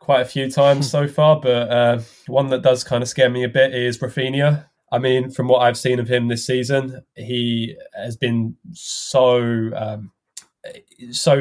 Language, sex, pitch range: English, male, 115-130 Hz